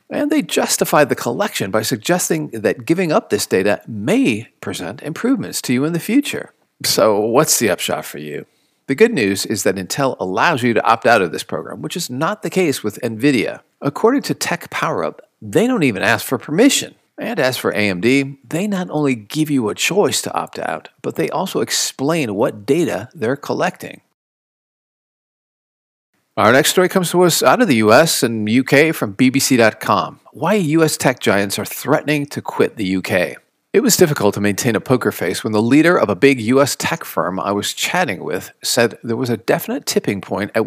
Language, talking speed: English, 195 wpm